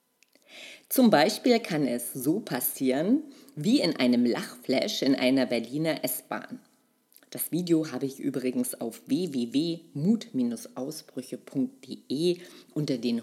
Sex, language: female, German